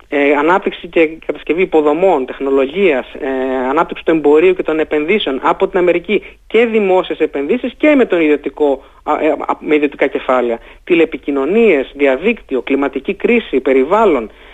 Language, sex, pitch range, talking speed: Greek, male, 140-195 Hz, 130 wpm